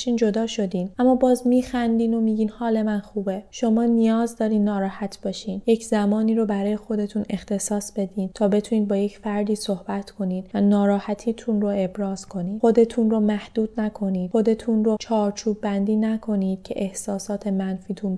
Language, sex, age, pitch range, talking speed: Persian, female, 20-39, 195-230 Hz, 155 wpm